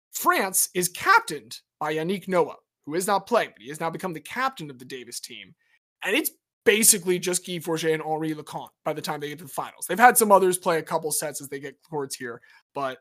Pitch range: 145-205 Hz